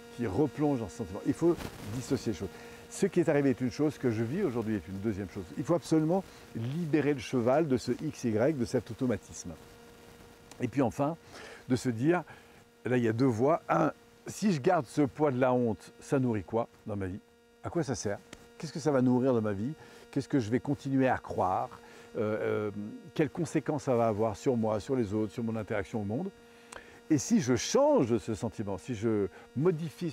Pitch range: 115-150 Hz